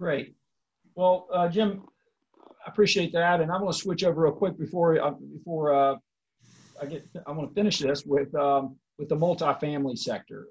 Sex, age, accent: male, 50-69, American